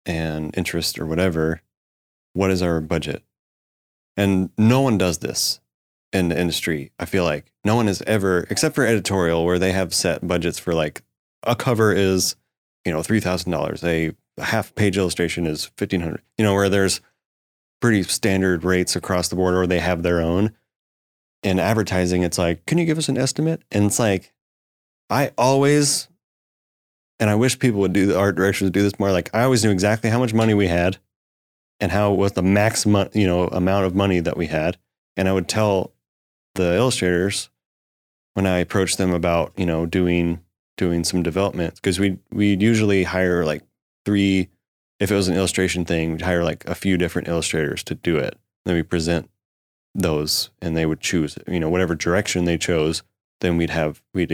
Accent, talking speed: American, 190 wpm